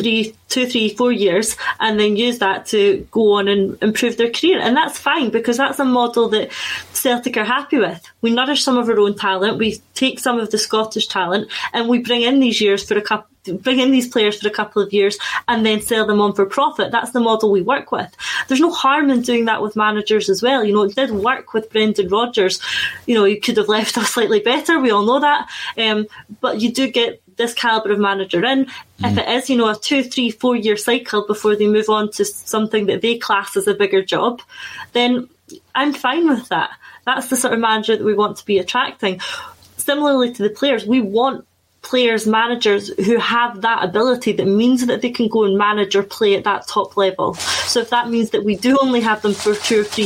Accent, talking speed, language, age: British, 235 wpm, English, 20-39